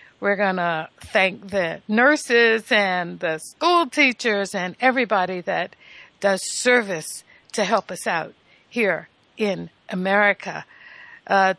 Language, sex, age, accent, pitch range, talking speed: English, female, 60-79, American, 200-255 Hz, 120 wpm